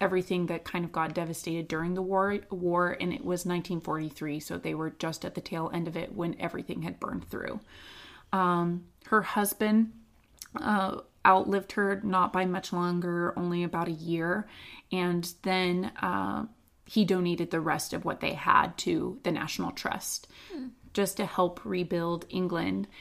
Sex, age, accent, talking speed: female, 20-39, American, 165 wpm